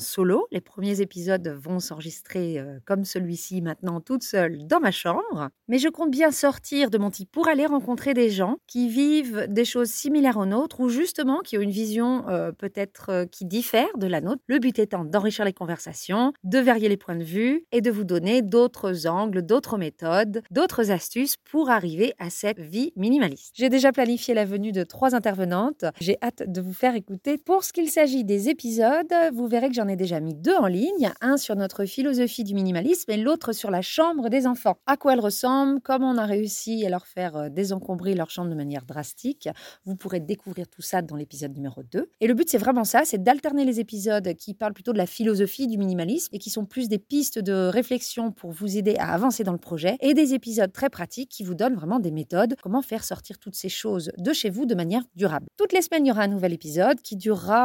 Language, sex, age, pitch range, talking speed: French, female, 30-49, 185-255 Hz, 220 wpm